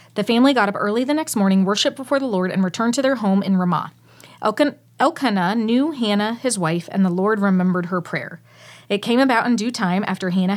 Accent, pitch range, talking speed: American, 185-235 Hz, 215 wpm